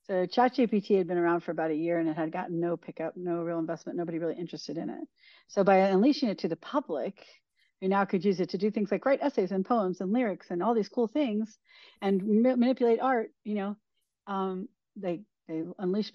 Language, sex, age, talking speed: English, female, 40-59, 225 wpm